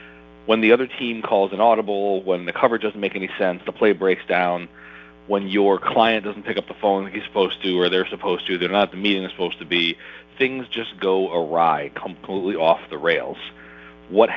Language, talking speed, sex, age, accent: English, 215 wpm, male, 40-59, American